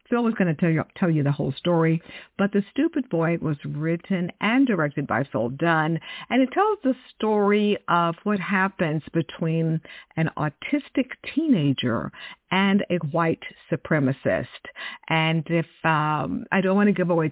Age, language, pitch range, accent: 50-69, English, 160-215 Hz, American